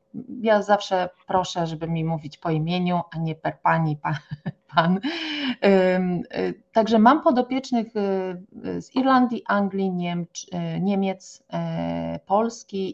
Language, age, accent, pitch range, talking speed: English, 30-49, Polish, 170-215 Hz, 105 wpm